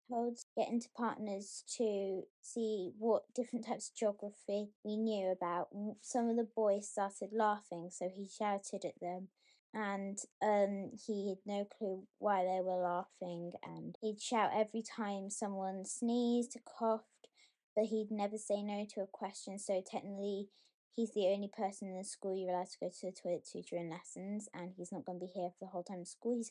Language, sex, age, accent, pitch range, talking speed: English, female, 10-29, British, 185-215 Hz, 190 wpm